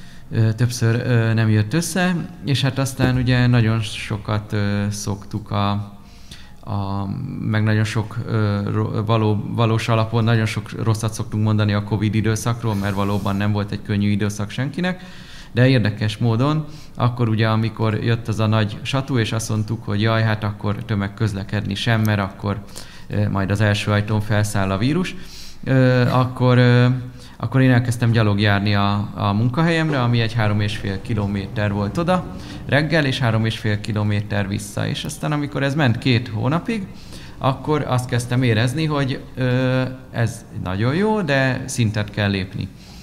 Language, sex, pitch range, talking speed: Hungarian, male, 105-130 Hz, 160 wpm